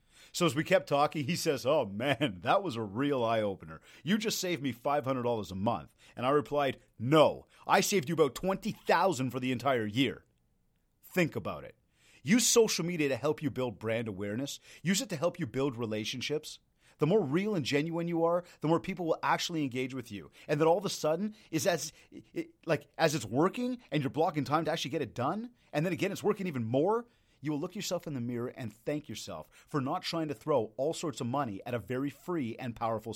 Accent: American